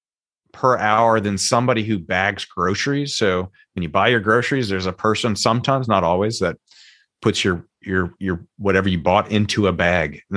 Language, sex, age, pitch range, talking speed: English, male, 30-49, 95-120 Hz, 180 wpm